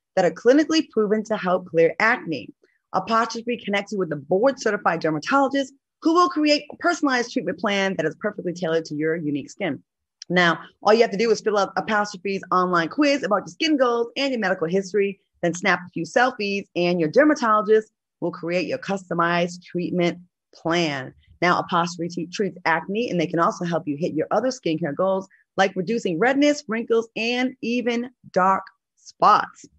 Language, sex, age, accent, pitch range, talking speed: English, female, 30-49, American, 175-235 Hz, 175 wpm